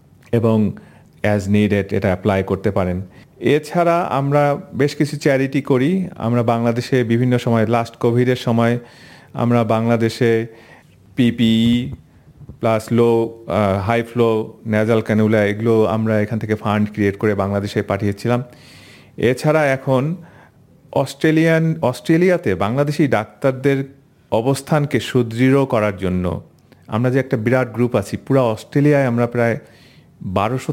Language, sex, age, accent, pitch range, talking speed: Bengali, male, 40-59, native, 110-135 Hz, 115 wpm